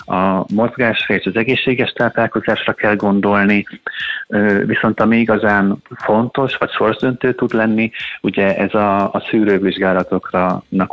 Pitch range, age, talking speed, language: 95-110 Hz, 30-49, 110 wpm, Hungarian